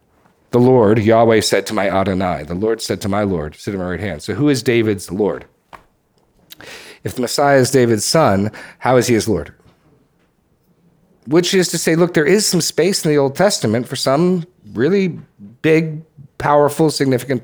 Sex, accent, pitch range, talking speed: male, American, 105-140 Hz, 180 wpm